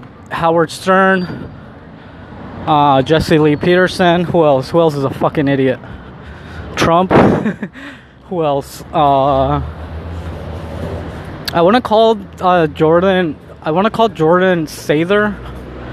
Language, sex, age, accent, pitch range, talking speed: English, male, 20-39, American, 135-180 Hz, 110 wpm